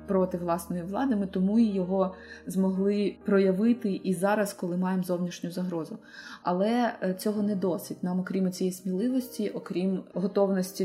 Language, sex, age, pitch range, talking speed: Ukrainian, female, 20-39, 185-215 Hz, 140 wpm